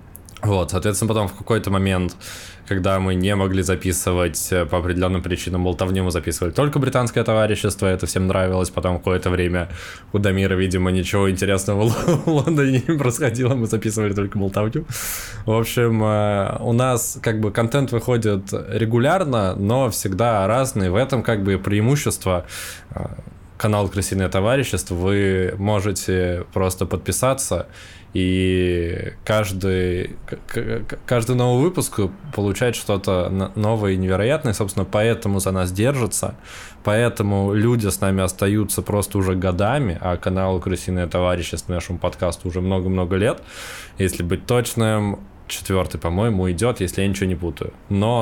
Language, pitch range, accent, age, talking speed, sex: Russian, 95-115 Hz, native, 20-39, 135 wpm, male